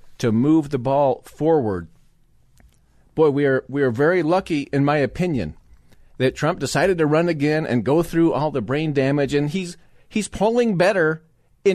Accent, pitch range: American, 135-170 Hz